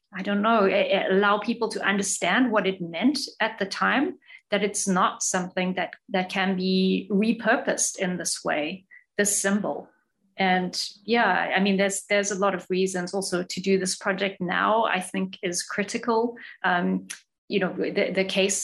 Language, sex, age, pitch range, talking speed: English, female, 30-49, 185-210 Hz, 175 wpm